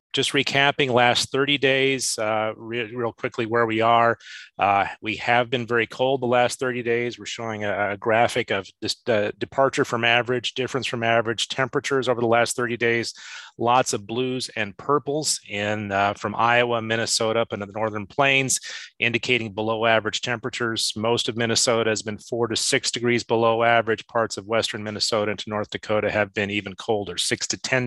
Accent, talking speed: American, 180 wpm